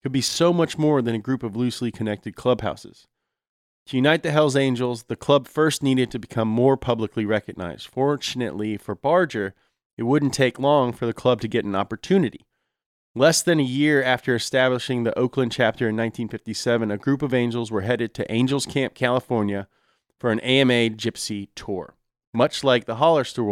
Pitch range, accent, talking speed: 115-135 Hz, American, 180 wpm